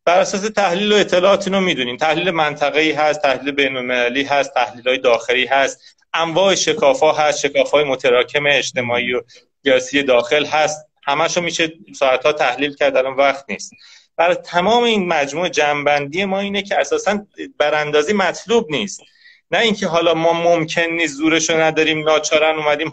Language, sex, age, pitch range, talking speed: Persian, male, 30-49, 140-190 Hz, 145 wpm